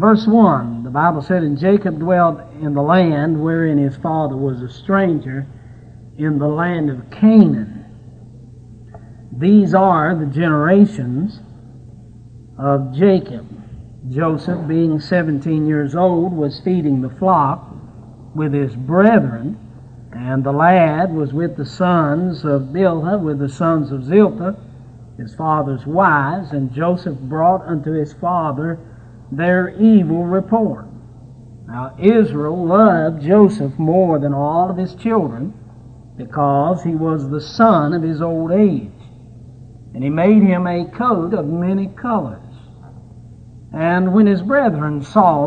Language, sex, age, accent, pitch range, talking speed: English, male, 60-79, American, 125-180 Hz, 130 wpm